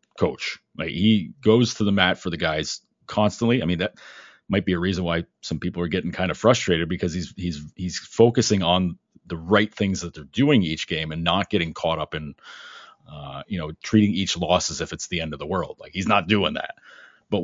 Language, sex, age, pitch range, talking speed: English, male, 30-49, 85-110 Hz, 225 wpm